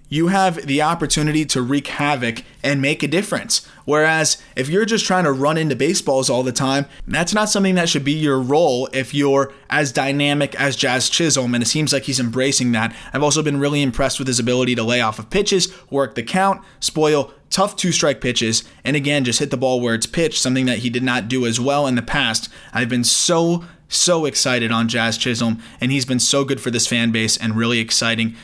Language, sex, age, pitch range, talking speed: English, male, 20-39, 125-150 Hz, 220 wpm